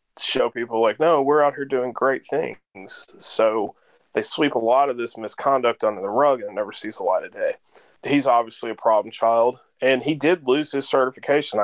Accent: American